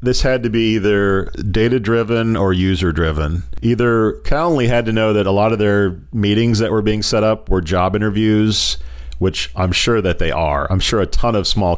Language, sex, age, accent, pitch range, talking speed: English, male, 40-59, American, 85-105 Hz, 200 wpm